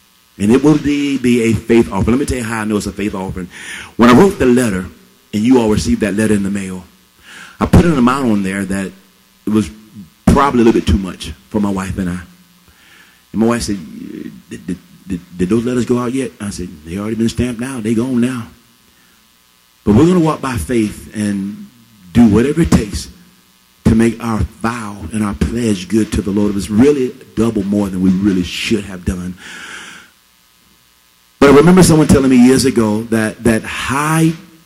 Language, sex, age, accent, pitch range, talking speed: English, male, 40-59, American, 95-120 Hz, 210 wpm